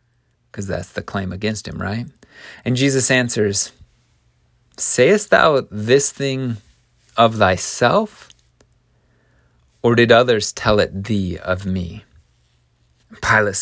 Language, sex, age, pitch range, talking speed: English, male, 30-49, 100-150 Hz, 110 wpm